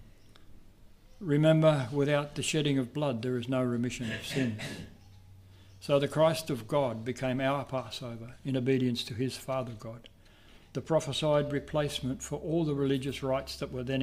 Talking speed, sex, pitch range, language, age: 160 wpm, male, 110-140 Hz, English, 60-79